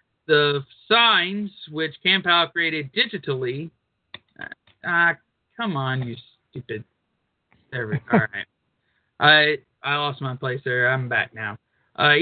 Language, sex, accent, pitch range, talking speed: English, male, American, 150-205 Hz, 115 wpm